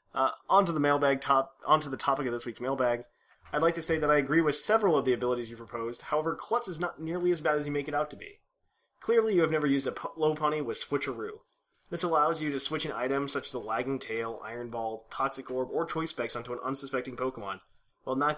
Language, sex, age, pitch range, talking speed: English, male, 20-39, 125-165 Hz, 250 wpm